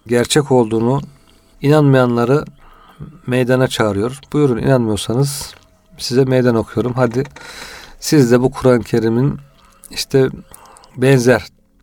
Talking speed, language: 90 wpm, Turkish